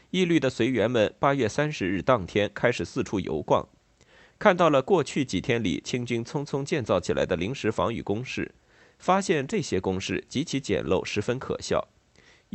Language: Chinese